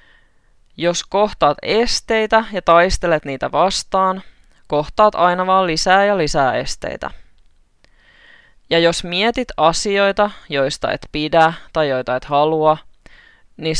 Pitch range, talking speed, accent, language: 150-220 Hz, 115 wpm, native, Finnish